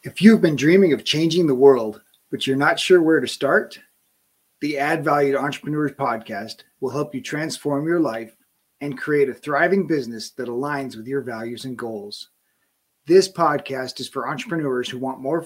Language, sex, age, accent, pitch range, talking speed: English, male, 30-49, American, 130-170 Hz, 185 wpm